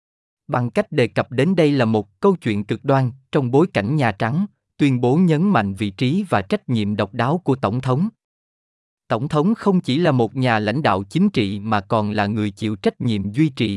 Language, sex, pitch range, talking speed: Vietnamese, male, 110-165 Hz, 220 wpm